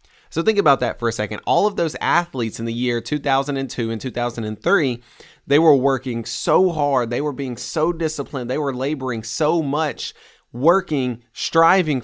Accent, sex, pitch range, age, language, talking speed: American, male, 115-155 Hz, 20-39, English, 170 wpm